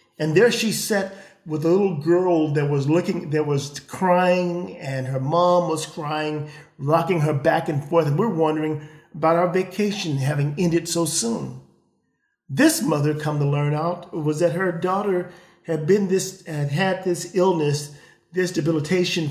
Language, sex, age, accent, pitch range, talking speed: English, male, 40-59, American, 140-175 Hz, 165 wpm